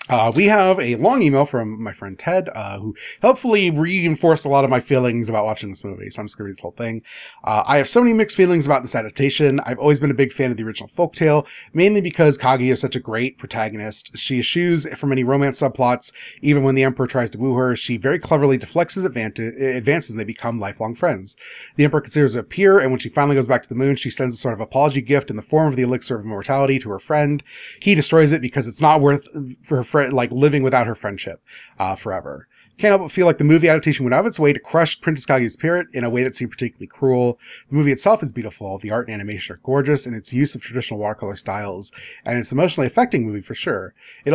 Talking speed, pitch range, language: 255 wpm, 120-150 Hz, English